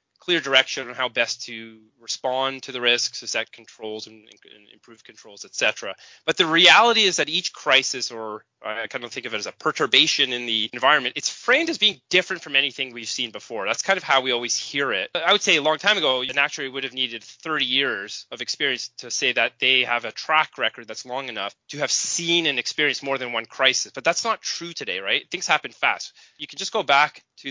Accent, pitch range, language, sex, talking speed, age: American, 120-155 Hz, English, male, 240 wpm, 20-39